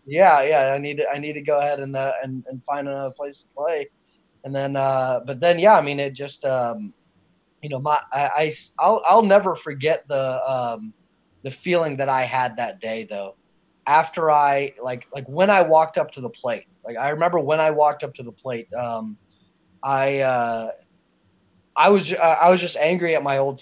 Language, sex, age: English, male, 20-39